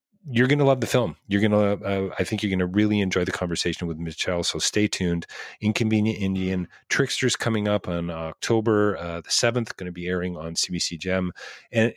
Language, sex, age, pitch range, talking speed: English, male, 40-59, 85-105 Hz, 210 wpm